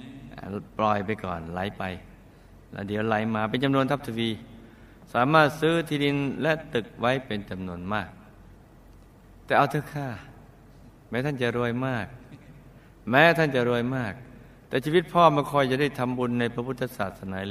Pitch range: 105-130 Hz